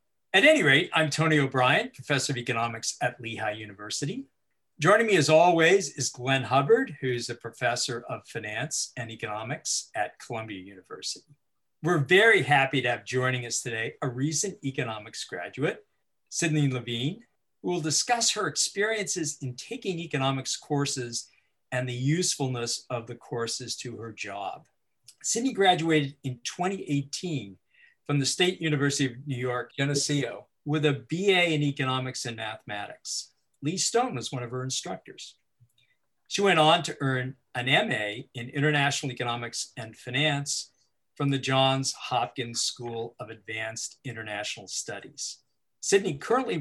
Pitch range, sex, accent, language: 120-150 Hz, male, American, English